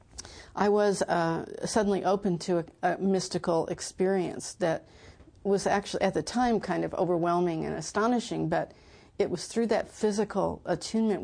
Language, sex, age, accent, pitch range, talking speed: English, female, 50-69, American, 165-190 Hz, 150 wpm